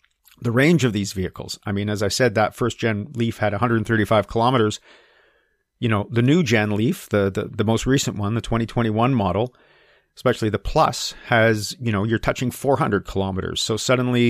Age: 40-59